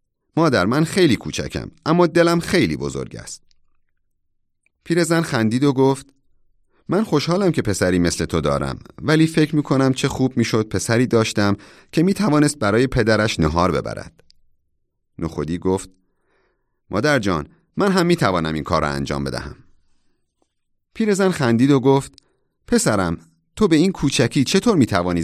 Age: 30-49